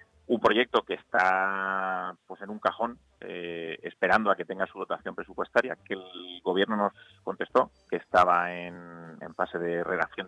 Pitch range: 85-105 Hz